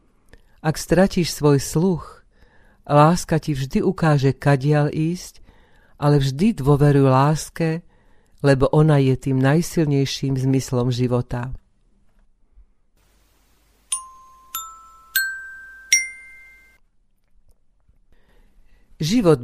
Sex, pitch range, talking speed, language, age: female, 135-170 Hz, 70 wpm, Slovak, 40-59